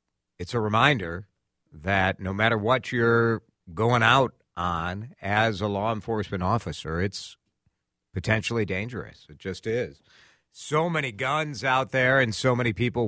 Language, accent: English, American